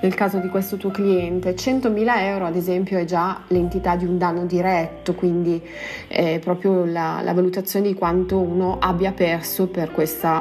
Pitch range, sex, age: 170-200 Hz, female, 30-49